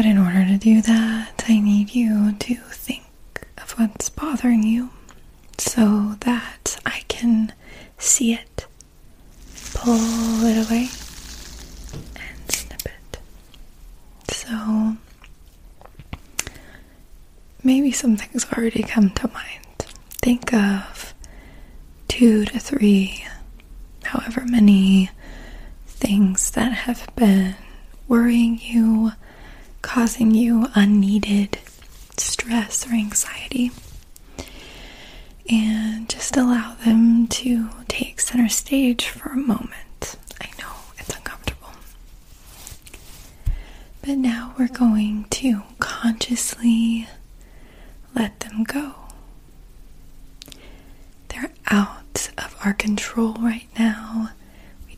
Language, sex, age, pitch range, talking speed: English, female, 20-39, 215-245 Hz, 95 wpm